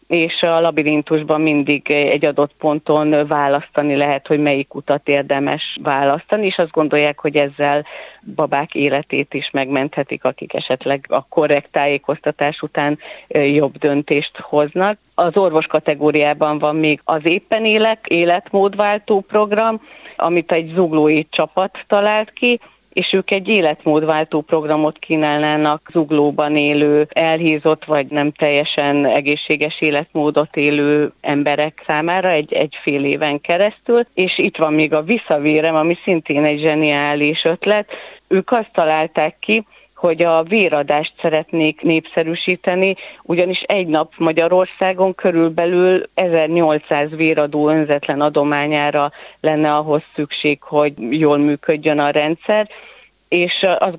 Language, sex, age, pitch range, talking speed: Hungarian, female, 30-49, 150-175 Hz, 120 wpm